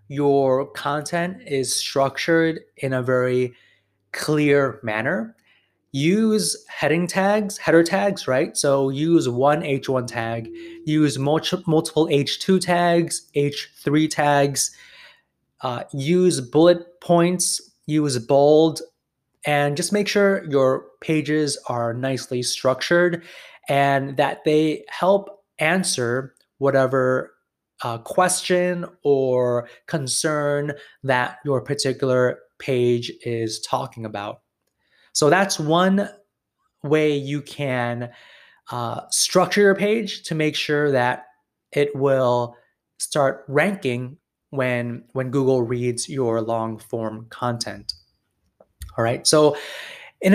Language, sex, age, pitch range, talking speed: English, male, 20-39, 125-170 Hz, 105 wpm